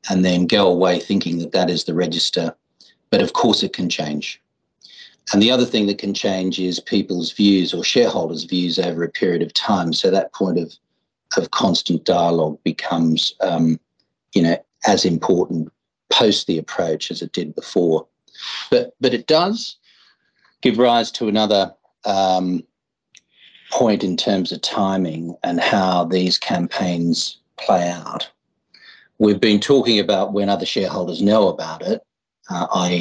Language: English